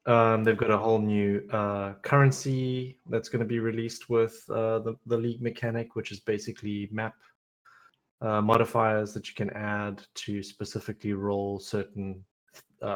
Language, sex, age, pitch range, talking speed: English, male, 20-39, 100-115 Hz, 160 wpm